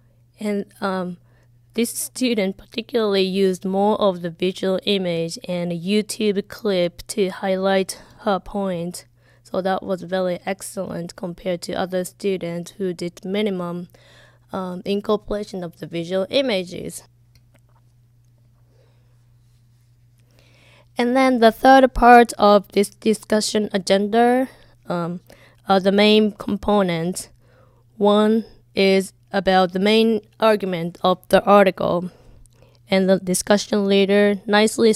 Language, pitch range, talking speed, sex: English, 165-205 Hz, 110 wpm, female